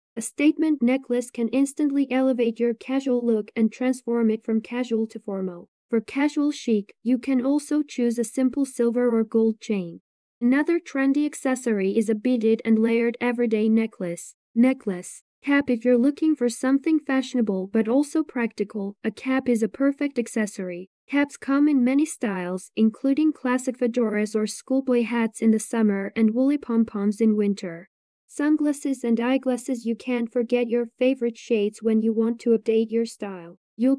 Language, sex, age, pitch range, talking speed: English, female, 10-29, 225-260 Hz, 160 wpm